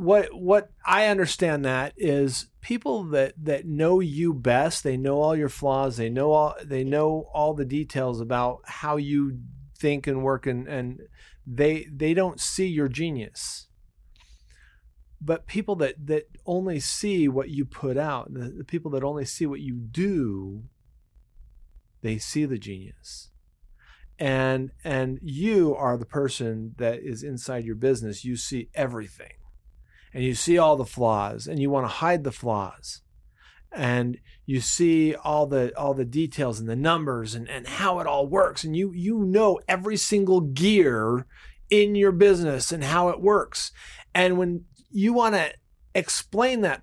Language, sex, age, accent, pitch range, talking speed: English, male, 40-59, American, 125-165 Hz, 165 wpm